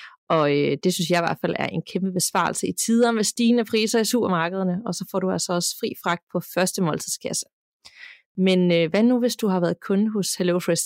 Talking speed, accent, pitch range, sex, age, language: 215 wpm, native, 175-220 Hz, female, 30-49, Danish